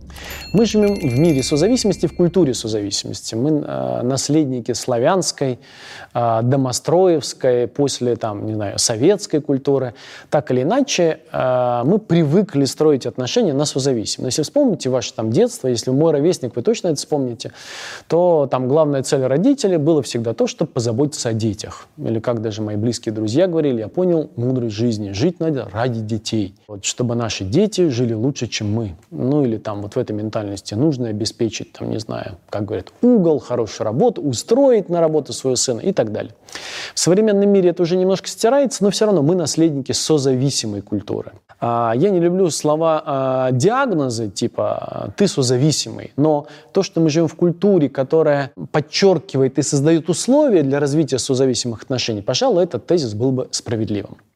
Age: 20-39